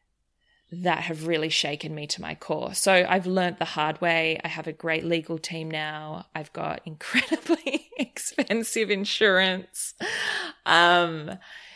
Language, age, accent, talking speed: English, 20-39, Australian, 140 wpm